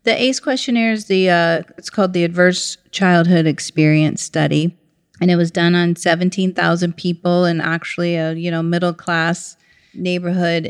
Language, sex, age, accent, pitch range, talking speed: English, female, 40-59, American, 165-195 Hz, 145 wpm